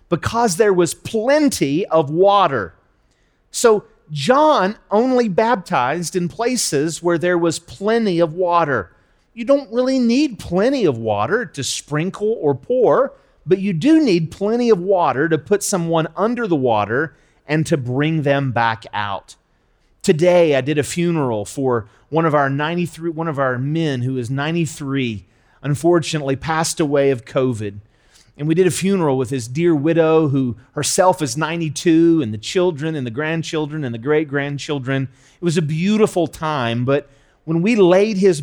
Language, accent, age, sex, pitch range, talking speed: English, American, 40-59, male, 140-195 Hz, 160 wpm